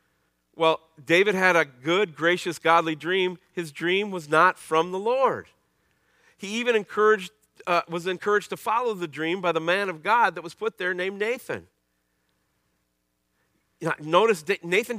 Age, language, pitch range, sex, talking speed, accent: 40-59, English, 115-175 Hz, male, 160 wpm, American